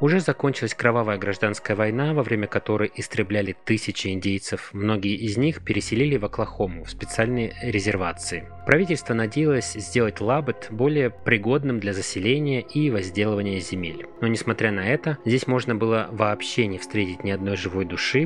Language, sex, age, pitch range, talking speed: Russian, male, 20-39, 100-130 Hz, 150 wpm